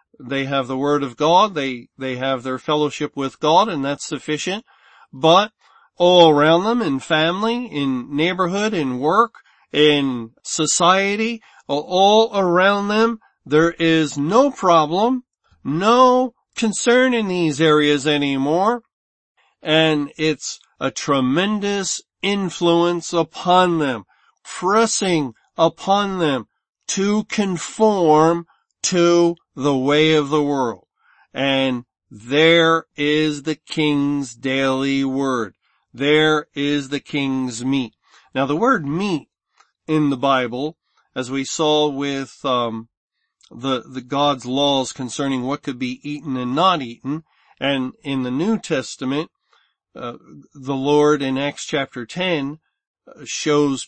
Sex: male